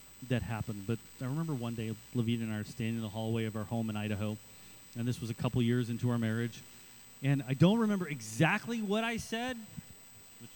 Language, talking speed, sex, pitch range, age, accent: English, 215 wpm, male, 115-170 Hz, 30-49, American